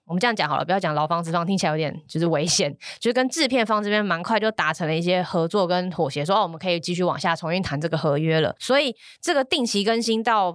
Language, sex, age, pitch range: Chinese, female, 20-39, 165-210 Hz